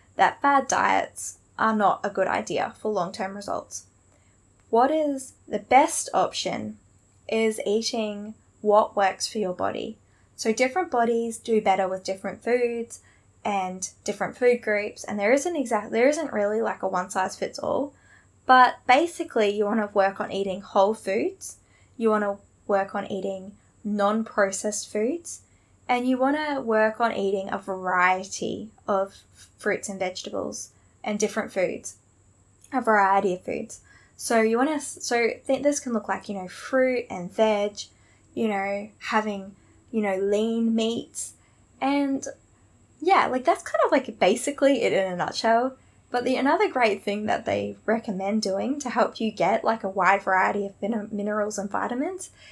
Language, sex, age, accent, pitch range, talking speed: English, female, 10-29, Australian, 195-245 Hz, 155 wpm